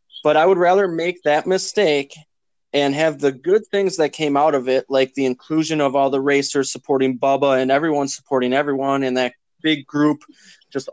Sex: male